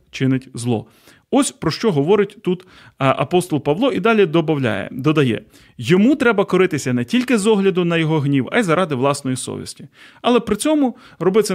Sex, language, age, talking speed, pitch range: male, Ukrainian, 30-49, 160 wpm, 135-185 Hz